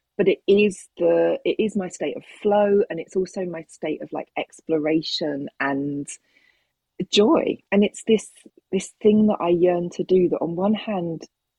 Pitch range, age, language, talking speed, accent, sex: 160-205 Hz, 40-59, English, 175 wpm, British, female